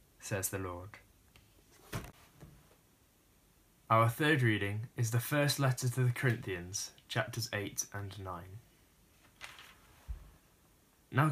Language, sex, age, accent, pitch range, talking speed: English, male, 10-29, British, 105-135 Hz, 95 wpm